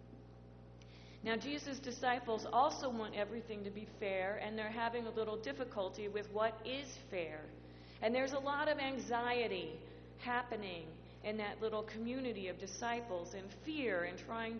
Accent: American